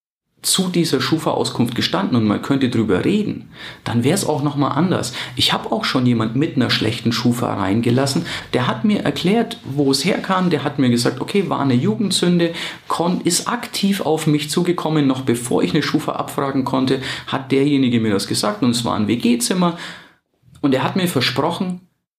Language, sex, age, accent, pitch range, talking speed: German, male, 40-59, German, 125-155 Hz, 180 wpm